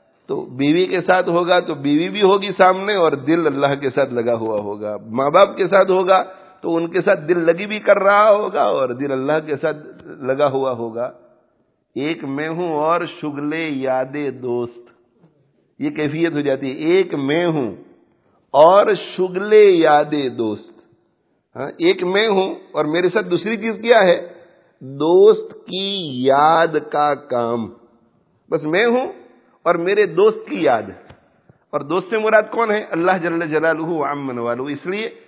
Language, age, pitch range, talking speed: English, 50-69, 145-195 Hz, 160 wpm